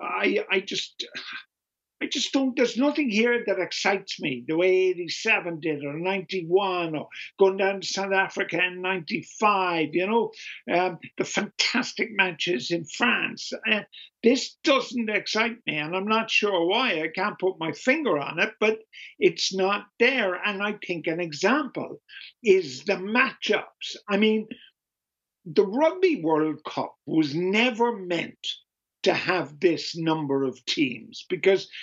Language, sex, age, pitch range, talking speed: English, male, 50-69, 170-245 Hz, 150 wpm